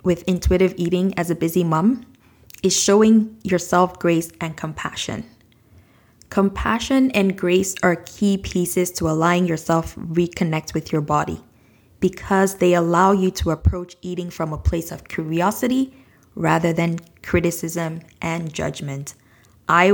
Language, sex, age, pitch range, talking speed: English, female, 20-39, 165-190 Hz, 130 wpm